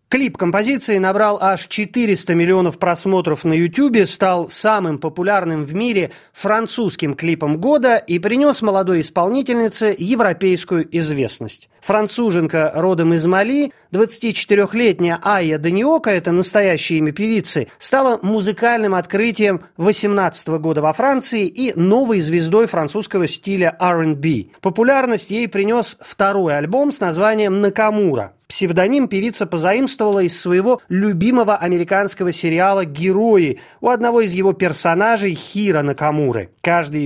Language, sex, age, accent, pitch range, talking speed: Russian, male, 30-49, native, 170-220 Hz, 115 wpm